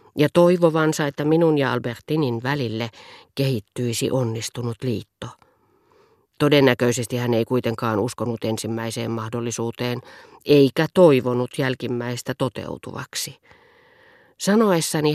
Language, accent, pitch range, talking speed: Finnish, native, 120-160 Hz, 85 wpm